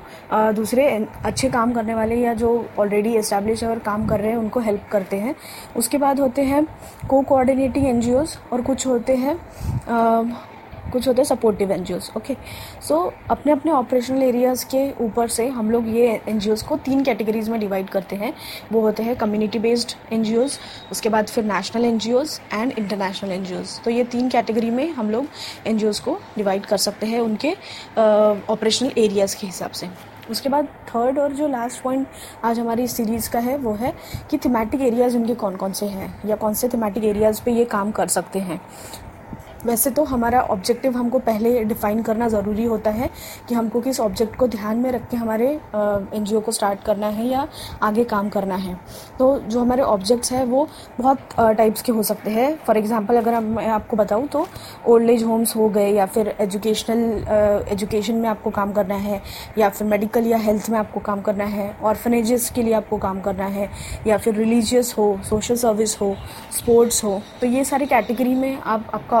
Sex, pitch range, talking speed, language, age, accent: female, 215-245 Hz, 190 wpm, Hindi, 20-39, native